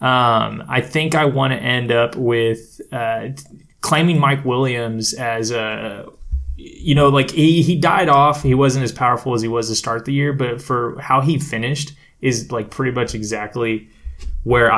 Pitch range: 110-135 Hz